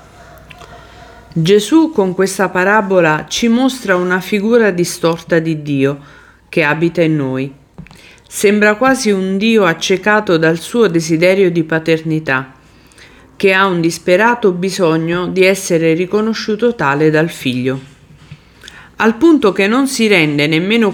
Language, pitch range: Italian, 155-205 Hz